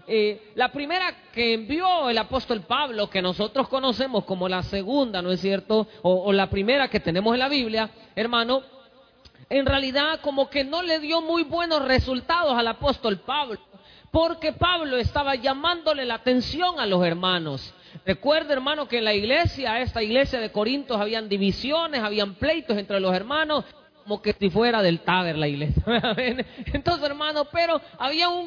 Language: Spanish